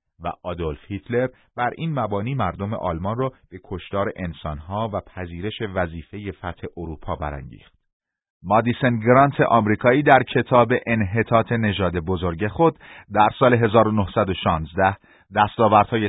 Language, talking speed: Persian, 115 wpm